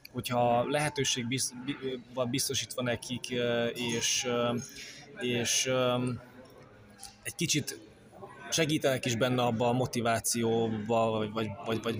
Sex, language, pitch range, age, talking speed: male, Hungarian, 120-135 Hz, 20-39, 95 wpm